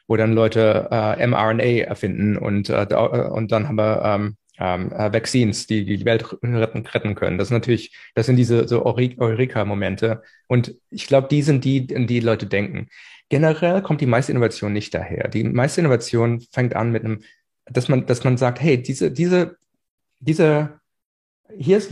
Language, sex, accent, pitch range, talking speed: German, male, German, 115-145 Hz, 180 wpm